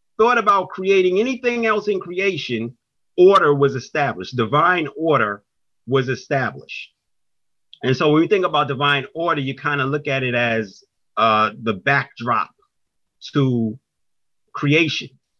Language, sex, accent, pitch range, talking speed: English, male, American, 120-150 Hz, 135 wpm